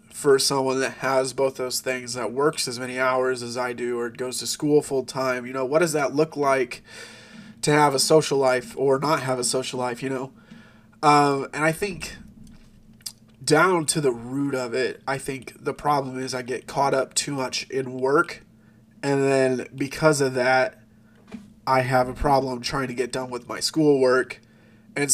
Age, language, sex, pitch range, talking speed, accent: 20-39, English, male, 120-140 Hz, 195 wpm, American